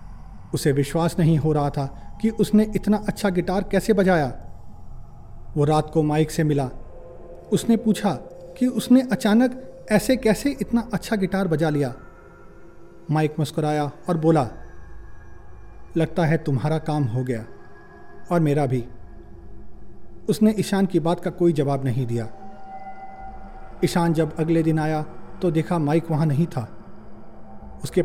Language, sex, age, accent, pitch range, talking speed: Hindi, male, 40-59, native, 145-190 Hz, 140 wpm